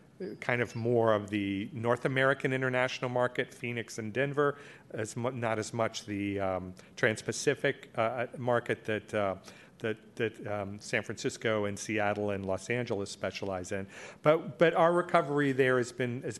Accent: American